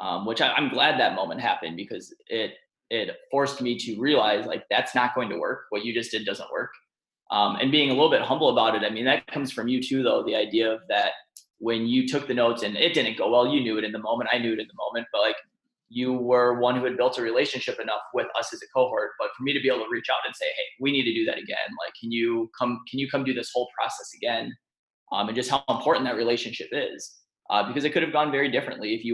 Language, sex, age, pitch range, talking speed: English, male, 20-39, 115-140 Hz, 275 wpm